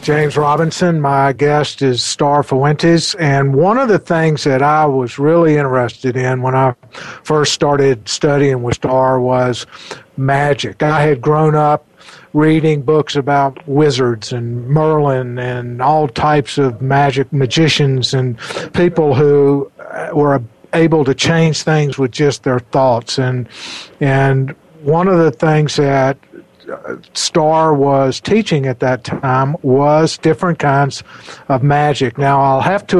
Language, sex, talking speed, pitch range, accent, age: English, male, 140 wpm, 130-155 Hz, American, 50-69